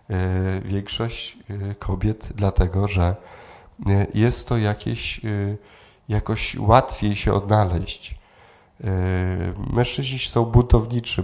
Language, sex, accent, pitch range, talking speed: Polish, male, native, 95-115 Hz, 75 wpm